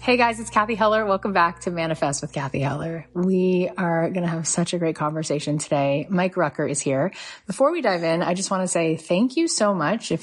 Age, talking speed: 30-49, 235 wpm